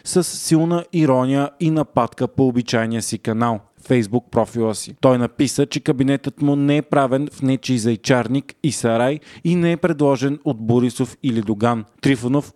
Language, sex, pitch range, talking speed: Bulgarian, male, 125-150 Hz, 165 wpm